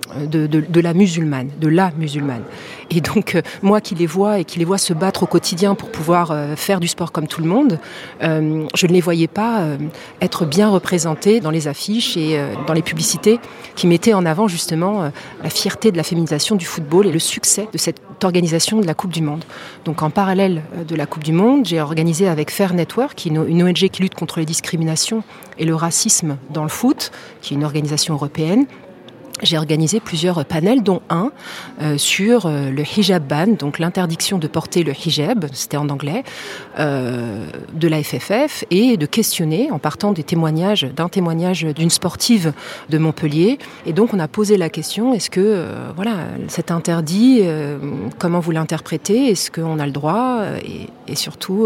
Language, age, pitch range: French, 40-59, 155-195 Hz